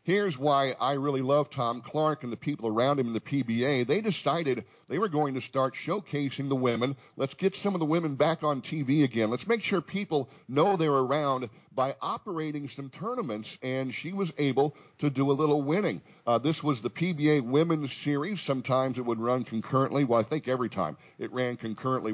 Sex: male